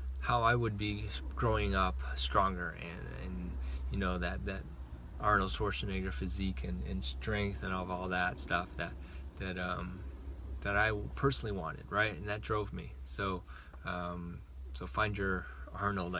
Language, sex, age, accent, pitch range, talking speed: English, male, 20-39, American, 85-110 Hz, 160 wpm